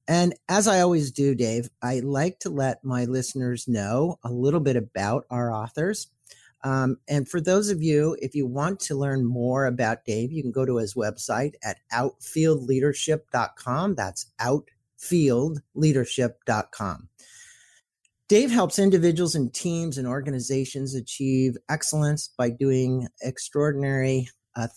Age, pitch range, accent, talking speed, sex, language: 50-69, 120-150 Hz, American, 135 wpm, male, English